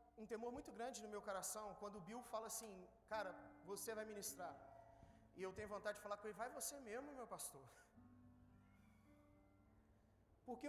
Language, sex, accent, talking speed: Gujarati, male, Brazilian, 170 wpm